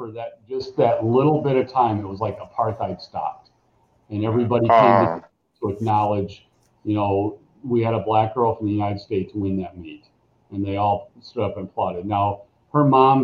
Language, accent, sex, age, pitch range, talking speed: English, American, male, 40-59, 100-115 Hz, 195 wpm